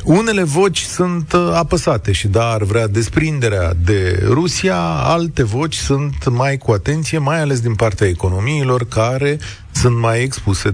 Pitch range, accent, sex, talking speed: 110-165 Hz, native, male, 145 wpm